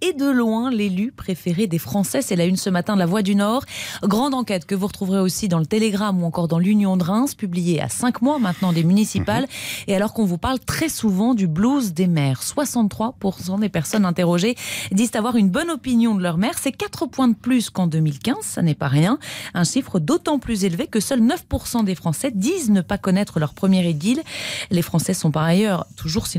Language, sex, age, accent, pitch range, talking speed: French, female, 30-49, French, 170-235 Hz, 220 wpm